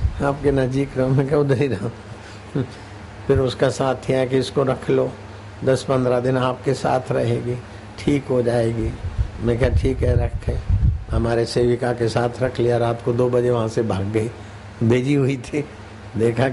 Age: 60-79